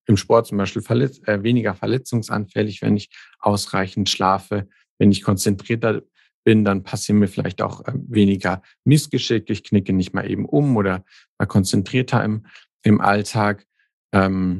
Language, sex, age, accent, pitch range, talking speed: German, male, 50-69, German, 100-110 Hz, 150 wpm